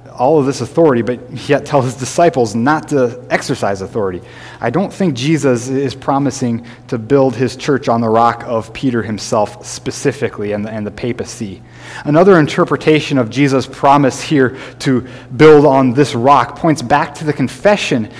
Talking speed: 165 wpm